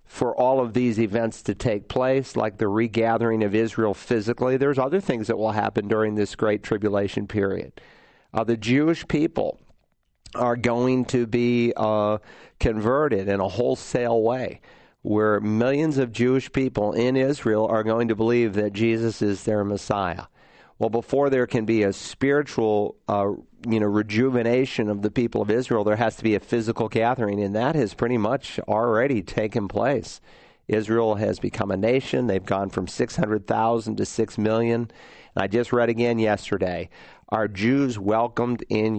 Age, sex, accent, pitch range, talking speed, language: 50-69, male, American, 105-120 Hz, 165 wpm, English